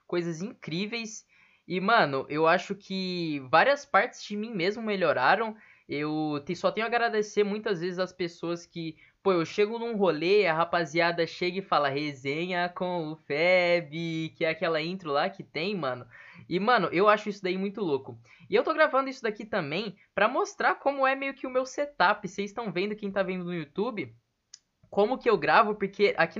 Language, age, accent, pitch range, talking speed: Portuguese, 10-29, Brazilian, 165-210 Hz, 190 wpm